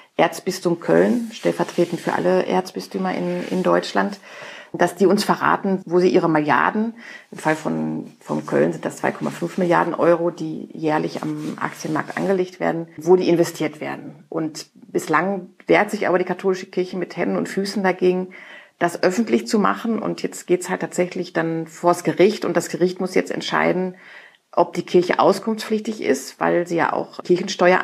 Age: 40-59